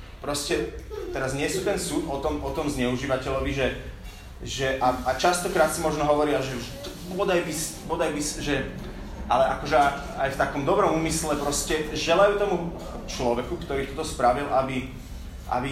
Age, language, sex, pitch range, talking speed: 30-49, Slovak, male, 130-160 Hz, 160 wpm